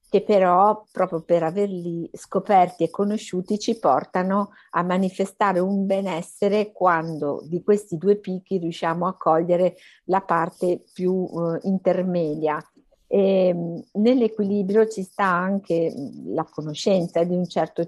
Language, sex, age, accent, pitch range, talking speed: Italian, female, 50-69, native, 170-200 Hz, 120 wpm